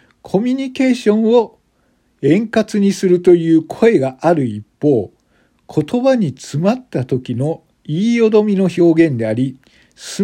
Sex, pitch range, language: male, 130-205 Hz, Japanese